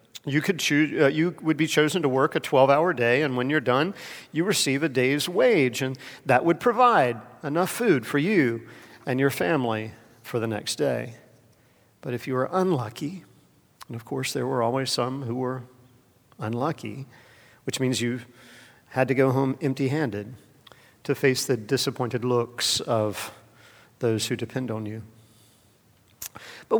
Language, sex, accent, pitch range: English, male, American, 130-205 Hz